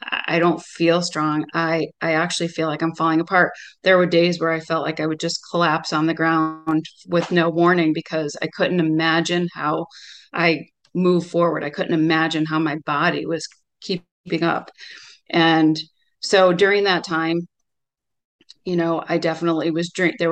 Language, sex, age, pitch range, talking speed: English, female, 30-49, 160-175 Hz, 170 wpm